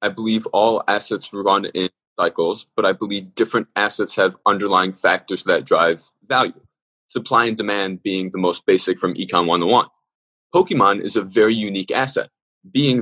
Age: 20-39